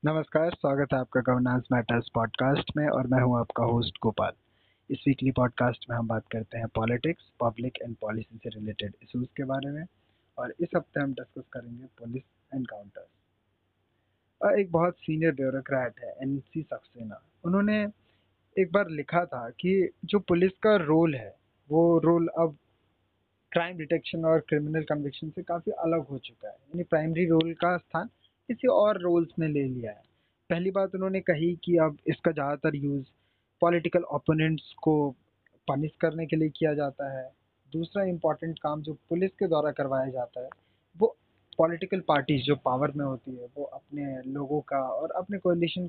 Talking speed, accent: 170 wpm, native